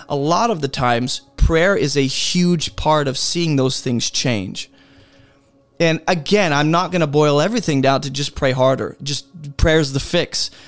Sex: male